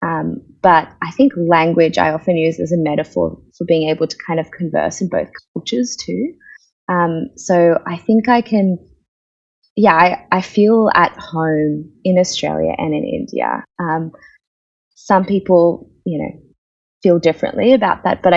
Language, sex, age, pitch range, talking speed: English, female, 20-39, 155-190 Hz, 160 wpm